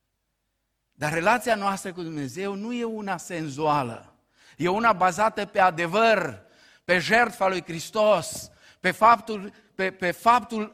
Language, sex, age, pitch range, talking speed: Romanian, male, 50-69, 115-185 Hz, 130 wpm